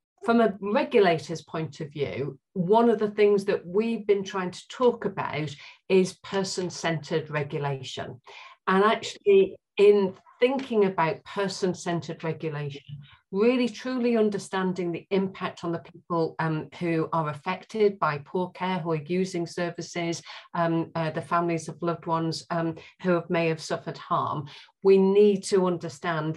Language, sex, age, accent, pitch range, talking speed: English, female, 40-59, British, 160-190 Hz, 145 wpm